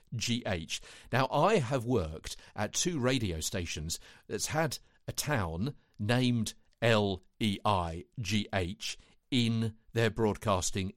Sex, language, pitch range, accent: male, English, 95-125 Hz, British